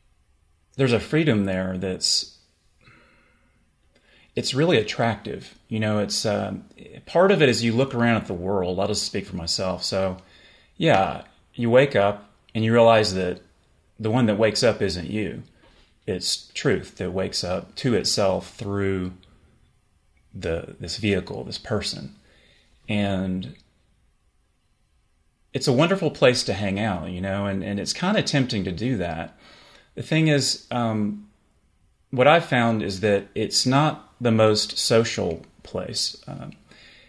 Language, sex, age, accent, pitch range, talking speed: English, male, 30-49, American, 95-115 Hz, 145 wpm